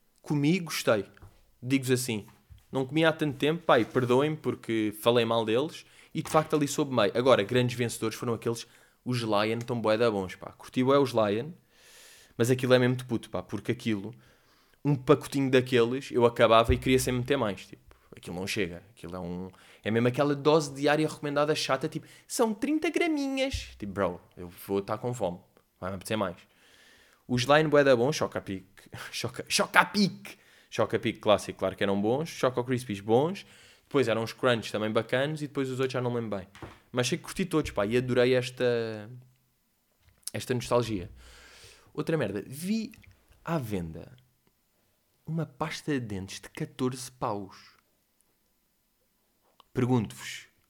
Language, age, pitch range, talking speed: Portuguese, 20-39, 110-145 Hz, 170 wpm